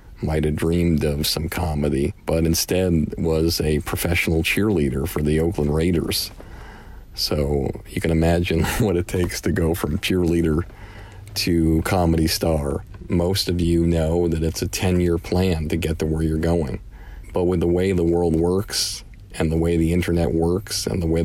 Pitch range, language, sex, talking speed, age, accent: 85-100 Hz, English, male, 170 wpm, 40-59, American